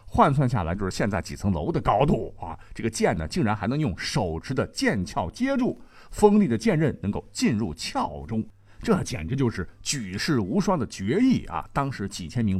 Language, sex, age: Chinese, male, 50-69